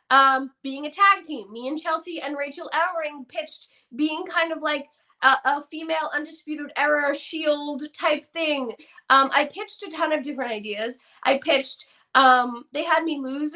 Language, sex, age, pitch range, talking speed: English, female, 20-39, 250-320 Hz, 175 wpm